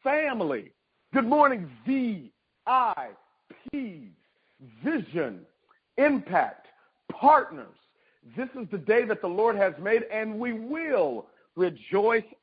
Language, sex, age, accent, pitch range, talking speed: English, male, 50-69, American, 205-275 Hz, 95 wpm